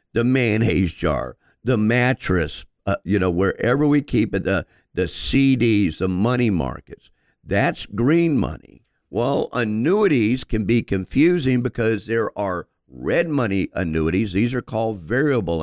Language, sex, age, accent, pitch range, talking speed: English, male, 50-69, American, 90-120 Hz, 140 wpm